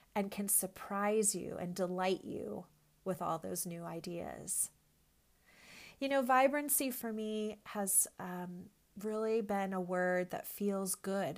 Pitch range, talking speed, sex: 175-210 Hz, 135 wpm, female